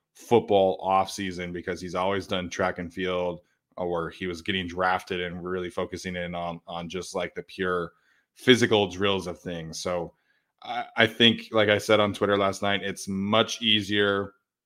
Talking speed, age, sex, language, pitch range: 170 wpm, 20-39, male, English, 90-105 Hz